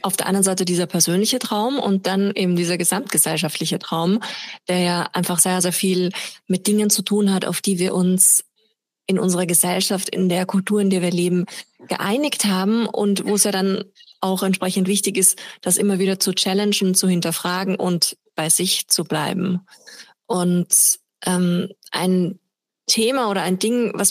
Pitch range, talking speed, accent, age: 180-205 Hz, 170 wpm, German, 20-39